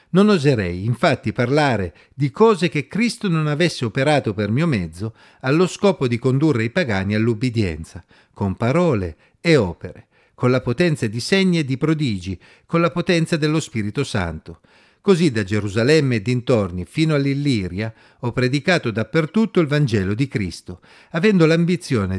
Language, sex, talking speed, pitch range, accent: Italian, male, 150 wpm, 105-170 Hz, native